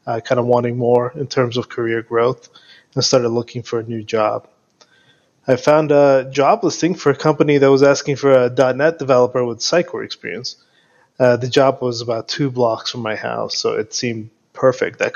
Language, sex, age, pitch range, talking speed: English, male, 20-39, 120-140 Hz, 200 wpm